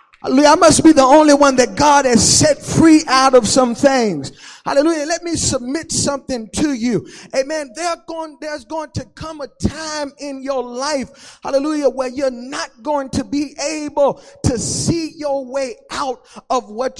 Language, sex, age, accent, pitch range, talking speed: English, male, 30-49, American, 250-305 Hz, 165 wpm